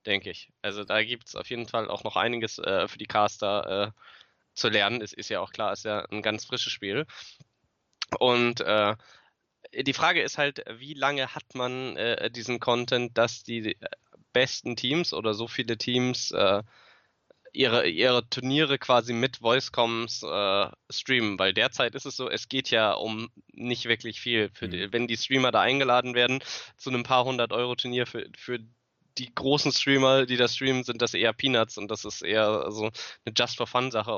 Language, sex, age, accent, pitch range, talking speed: German, male, 10-29, German, 110-130 Hz, 185 wpm